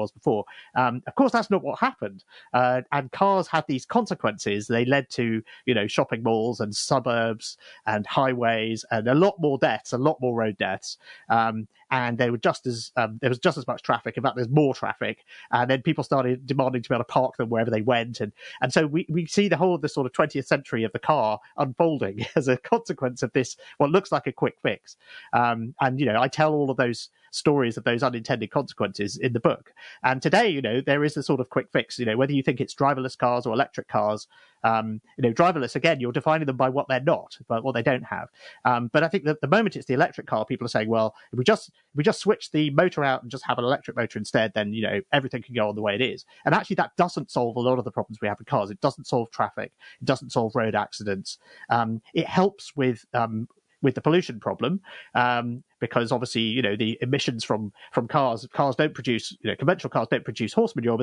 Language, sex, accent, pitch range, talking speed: English, male, British, 115-150 Hz, 245 wpm